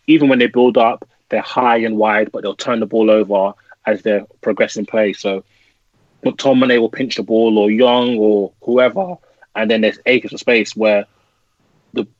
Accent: British